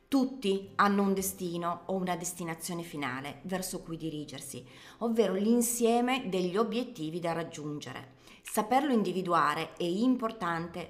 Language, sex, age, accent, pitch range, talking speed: Italian, female, 30-49, native, 170-230 Hz, 115 wpm